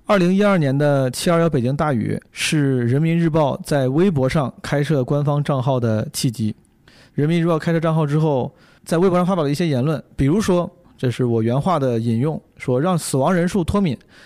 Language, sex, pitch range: Chinese, male, 130-170 Hz